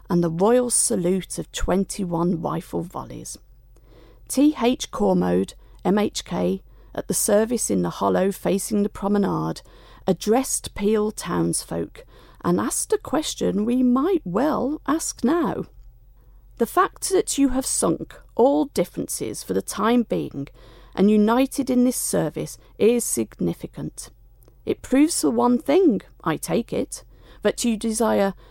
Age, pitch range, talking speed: 40-59, 140-235 Hz, 130 wpm